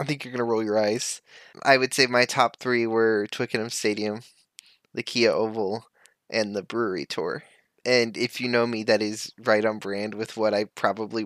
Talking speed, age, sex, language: 205 wpm, 20-39, male, English